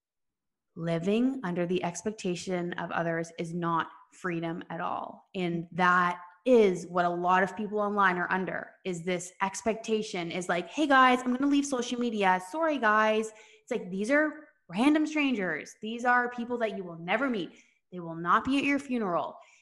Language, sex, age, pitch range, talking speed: English, female, 20-39, 180-250 Hz, 175 wpm